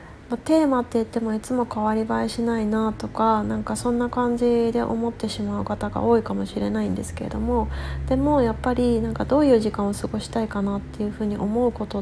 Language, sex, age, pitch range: Japanese, female, 30-49, 195-245 Hz